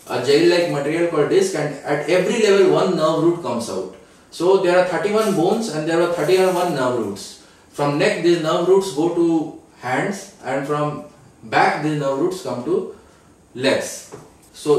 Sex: male